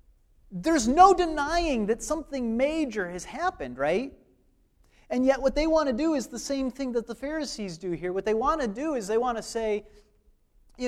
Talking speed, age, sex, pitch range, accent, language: 200 wpm, 40-59, male, 190-270 Hz, American, English